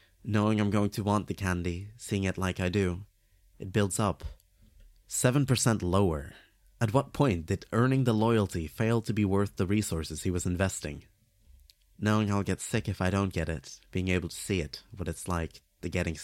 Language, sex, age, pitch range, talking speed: English, male, 30-49, 85-105 Hz, 190 wpm